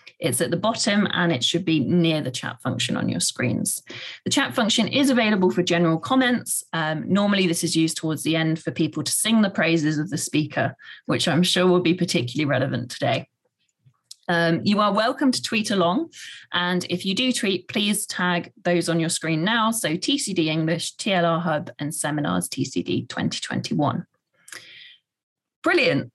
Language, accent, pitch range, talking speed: English, British, 160-205 Hz, 175 wpm